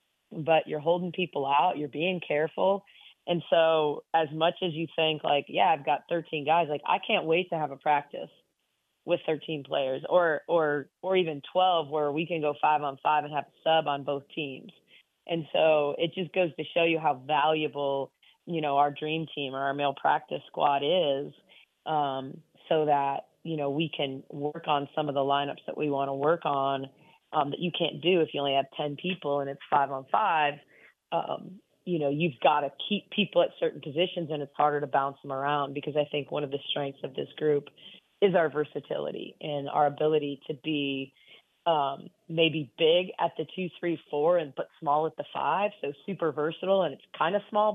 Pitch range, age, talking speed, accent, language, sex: 145-170 Hz, 30-49, 205 wpm, American, English, female